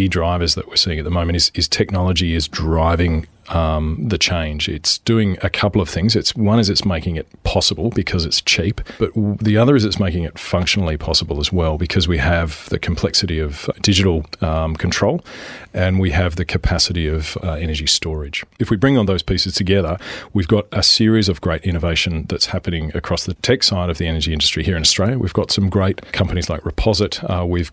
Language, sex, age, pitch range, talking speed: English, male, 30-49, 80-100 Hz, 210 wpm